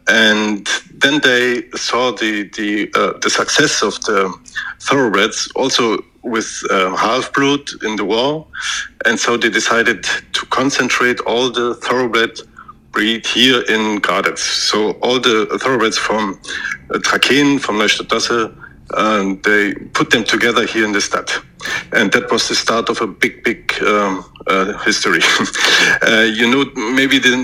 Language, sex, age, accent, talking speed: English, male, 50-69, German, 145 wpm